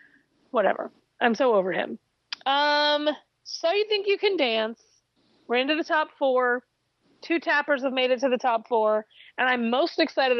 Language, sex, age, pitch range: English, female, 30-49, 225-280 Hz